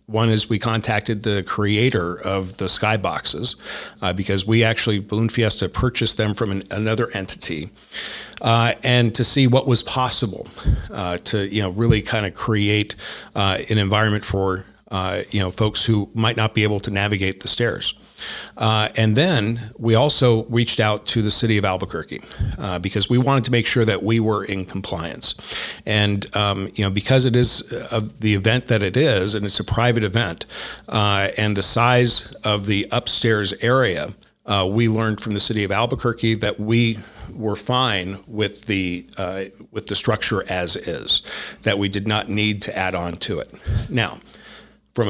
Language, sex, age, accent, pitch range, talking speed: English, male, 50-69, American, 100-115 Hz, 180 wpm